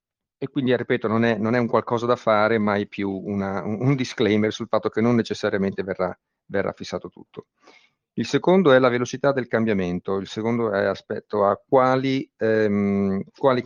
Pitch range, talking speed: 105-130 Hz, 185 wpm